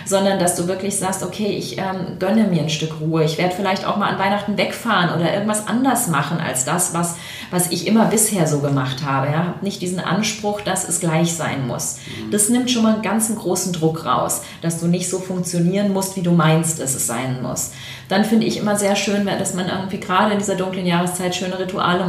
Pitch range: 160-190 Hz